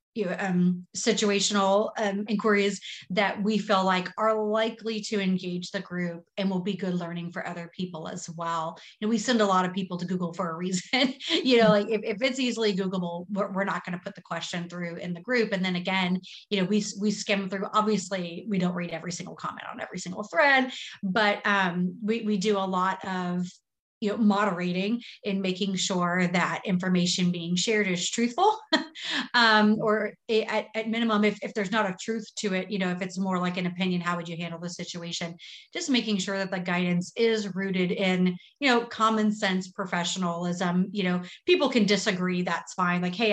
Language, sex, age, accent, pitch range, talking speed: English, female, 30-49, American, 180-215 Hz, 210 wpm